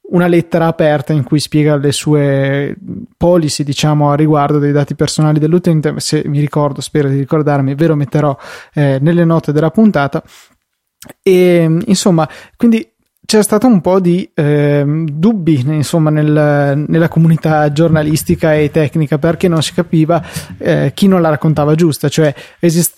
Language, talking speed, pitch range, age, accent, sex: Italian, 155 wpm, 150-180 Hz, 20-39, native, male